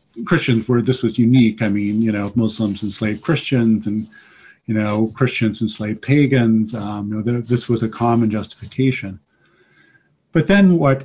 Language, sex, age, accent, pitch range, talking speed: English, male, 50-69, American, 105-125 Hz, 155 wpm